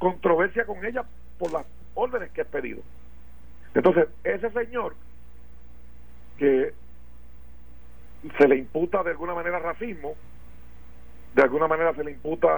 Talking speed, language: 125 wpm, Spanish